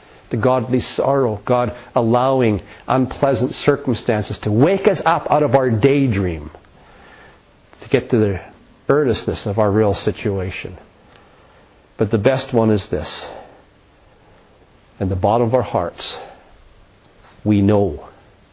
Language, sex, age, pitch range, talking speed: English, male, 50-69, 100-125 Hz, 125 wpm